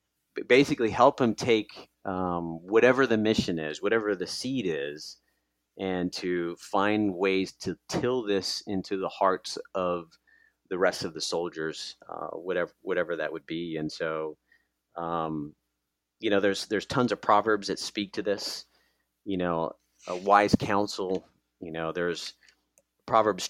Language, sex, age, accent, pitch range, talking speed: English, male, 30-49, American, 90-110 Hz, 150 wpm